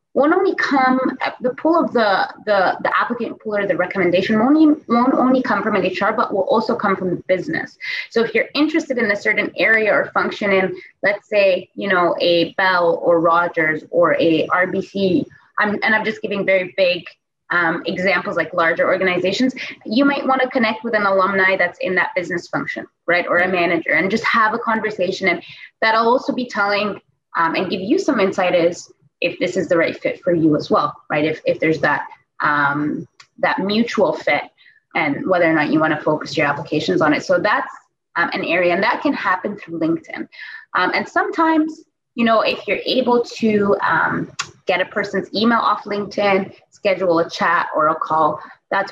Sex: female